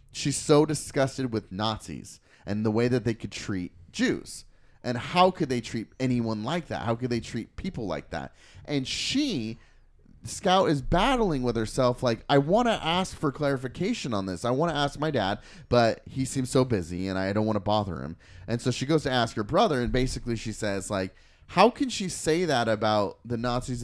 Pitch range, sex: 105-145 Hz, male